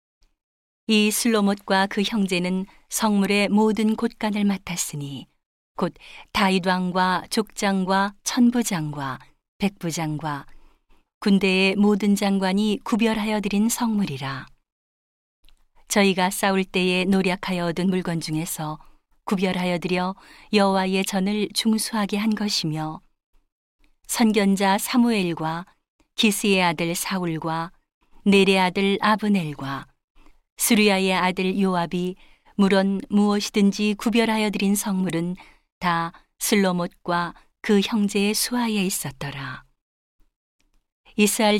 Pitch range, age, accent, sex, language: 180-210 Hz, 40-59, native, female, Korean